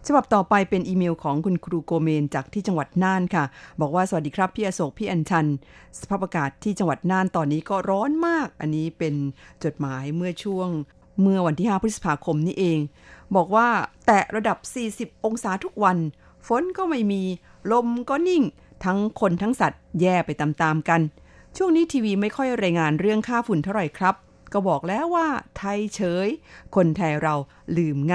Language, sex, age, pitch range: Thai, female, 50-69, 160-205 Hz